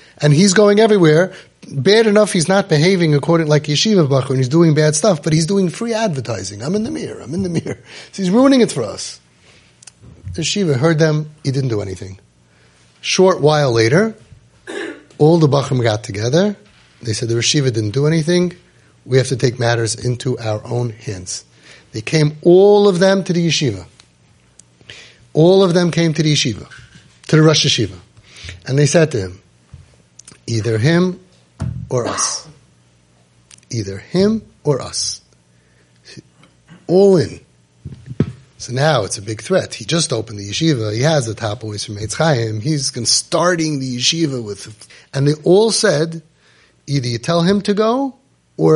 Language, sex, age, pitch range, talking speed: English, male, 30-49, 110-180 Hz, 170 wpm